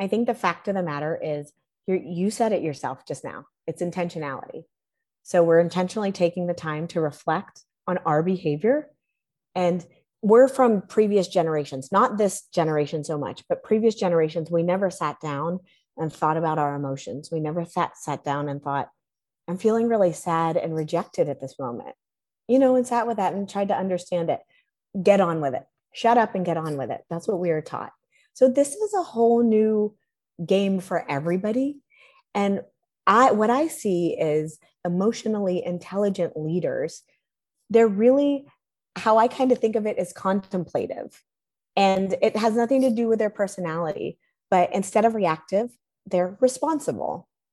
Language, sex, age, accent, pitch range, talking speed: English, female, 30-49, American, 165-220 Hz, 170 wpm